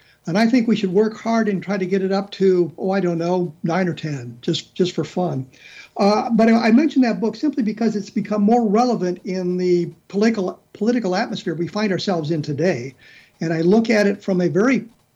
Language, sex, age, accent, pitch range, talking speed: English, male, 50-69, American, 170-215 Hz, 220 wpm